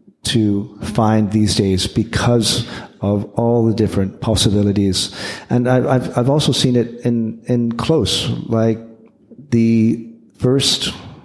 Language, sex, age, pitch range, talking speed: English, male, 40-59, 105-120 Hz, 125 wpm